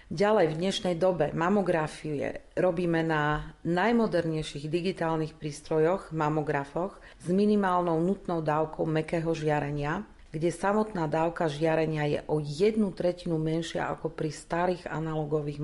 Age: 40-59